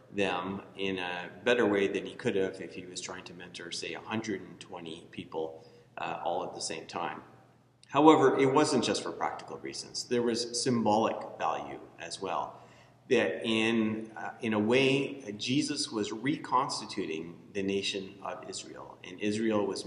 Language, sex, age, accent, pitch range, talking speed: English, male, 40-59, American, 95-115 Hz, 160 wpm